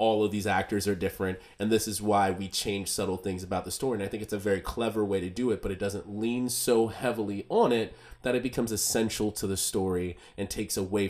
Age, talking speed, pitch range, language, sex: 30-49, 250 wpm, 95-110 Hz, English, male